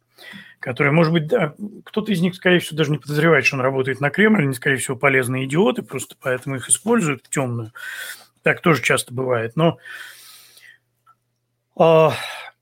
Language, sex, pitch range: Russian, male, 125-180 Hz